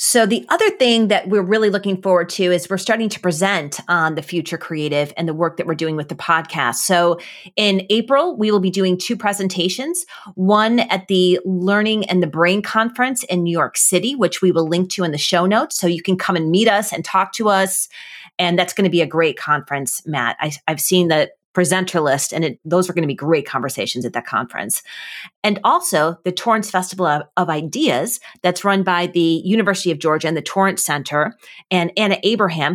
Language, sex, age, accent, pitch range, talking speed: English, female, 30-49, American, 165-200 Hz, 215 wpm